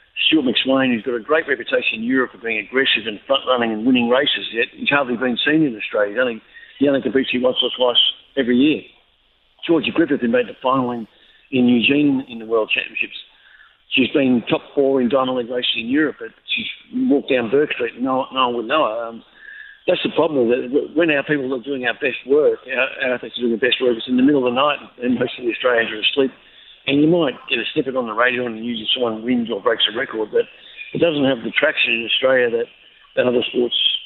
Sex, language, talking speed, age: male, English, 235 wpm, 60-79